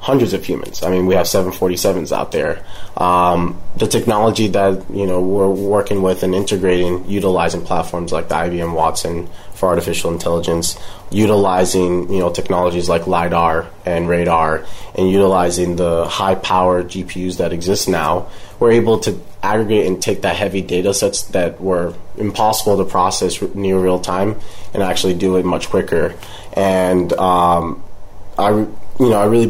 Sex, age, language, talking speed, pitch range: male, 20-39, English, 155 wpm, 90-105 Hz